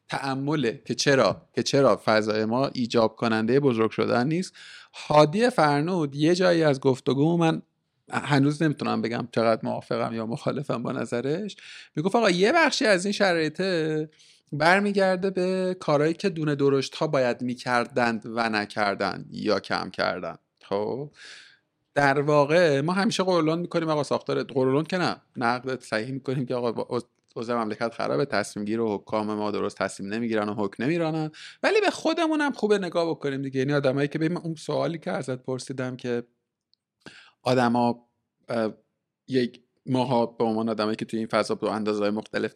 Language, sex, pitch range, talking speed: Persian, male, 115-160 Hz, 160 wpm